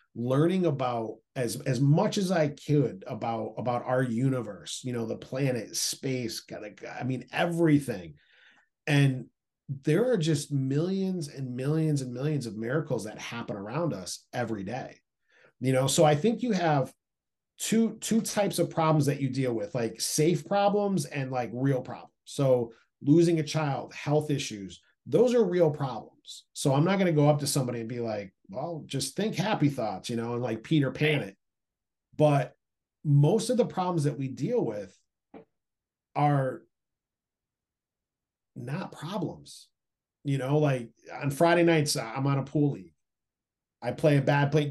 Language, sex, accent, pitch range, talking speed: English, male, American, 130-160 Hz, 165 wpm